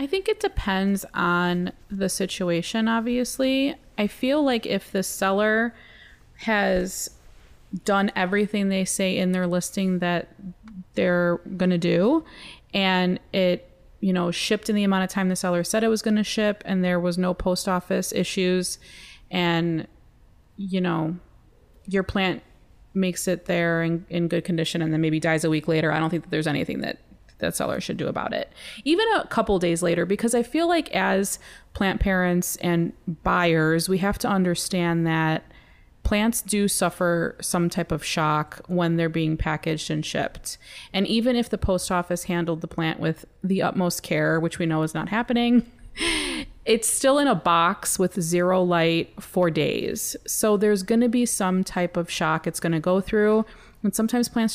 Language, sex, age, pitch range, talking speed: English, female, 20-39, 170-210 Hz, 180 wpm